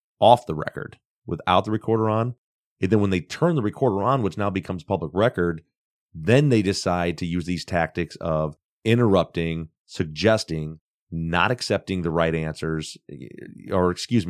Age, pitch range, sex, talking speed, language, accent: 30-49, 85-110 Hz, male, 155 wpm, English, American